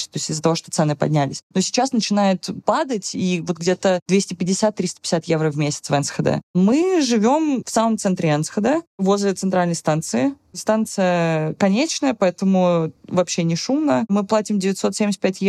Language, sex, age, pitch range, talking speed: Russian, female, 20-39, 175-205 Hz, 145 wpm